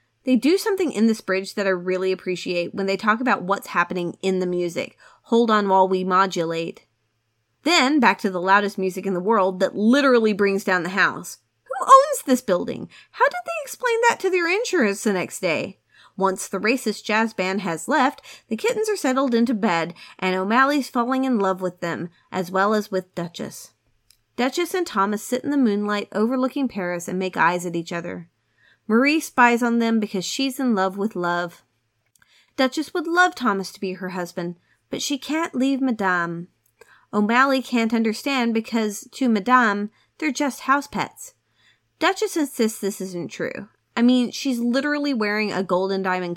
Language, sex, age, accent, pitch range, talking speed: English, female, 30-49, American, 185-255 Hz, 180 wpm